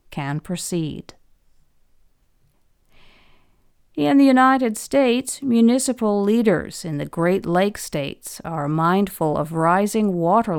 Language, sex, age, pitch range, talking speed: English, female, 50-69, 160-225 Hz, 100 wpm